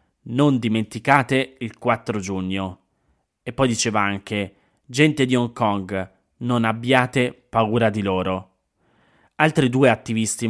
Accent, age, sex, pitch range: native, 20-39, male, 105-125 Hz